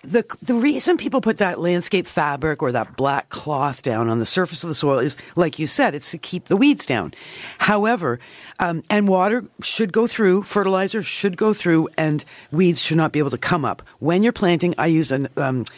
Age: 50-69